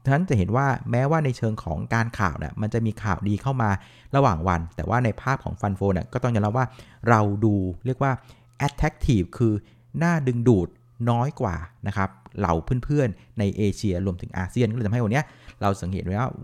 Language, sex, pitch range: Thai, male, 100-125 Hz